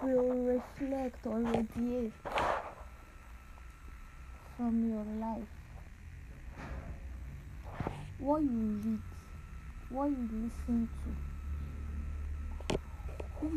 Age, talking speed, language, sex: 20-39, 65 wpm, English, female